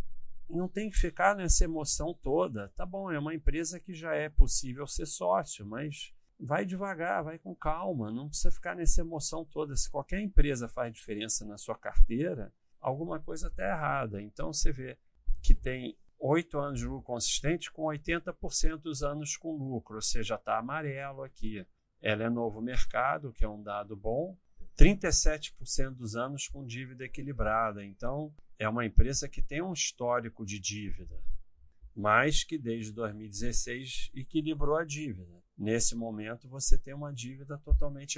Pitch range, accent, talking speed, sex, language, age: 110-155 Hz, Brazilian, 160 wpm, male, Portuguese, 40-59